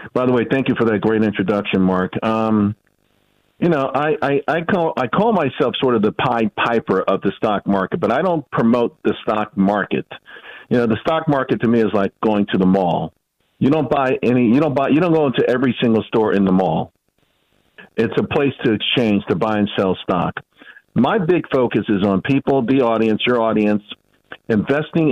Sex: male